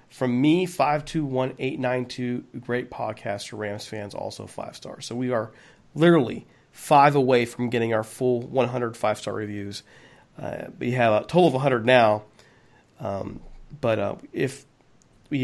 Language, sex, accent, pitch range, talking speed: English, male, American, 115-150 Hz, 145 wpm